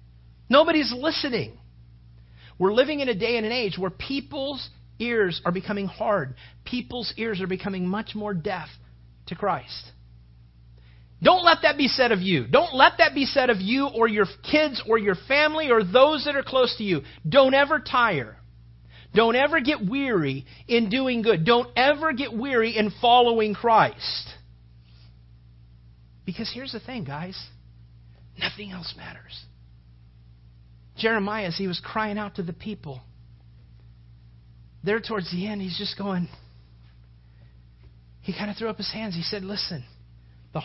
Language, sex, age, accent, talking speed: English, male, 40-59, American, 155 wpm